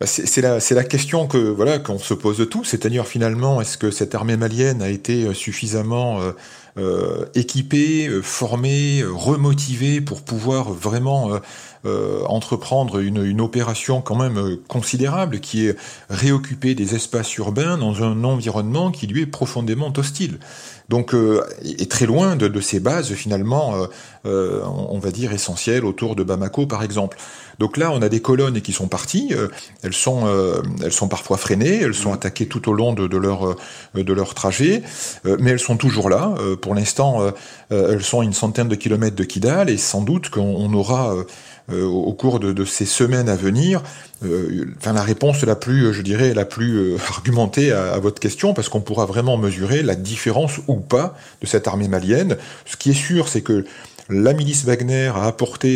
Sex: male